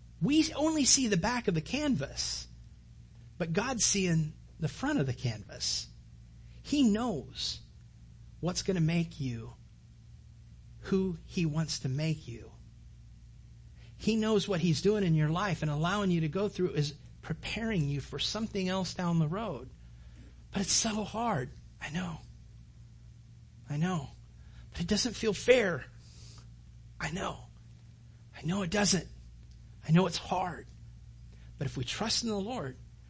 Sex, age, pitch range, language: male, 40-59, 115-175 Hz, English